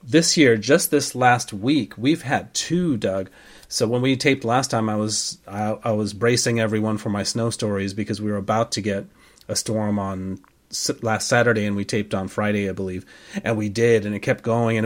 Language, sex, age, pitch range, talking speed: English, male, 30-49, 110-140 Hz, 215 wpm